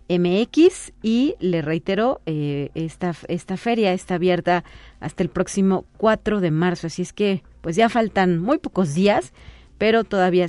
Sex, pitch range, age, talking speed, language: female, 175-225 Hz, 40-59, 155 wpm, Spanish